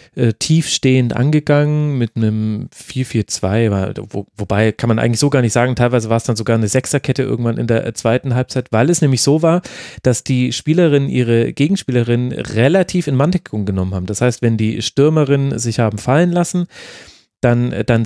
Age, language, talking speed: 30-49, German, 170 wpm